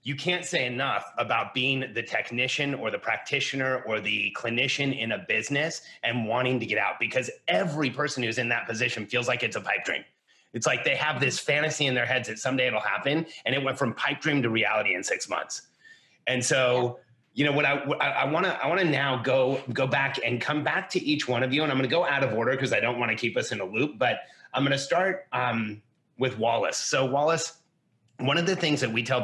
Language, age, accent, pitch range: English, 30-49, American, 120-145 Hz